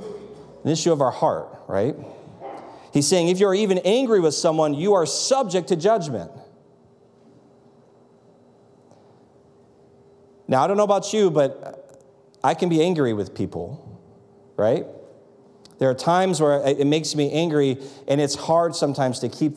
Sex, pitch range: male, 125-165 Hz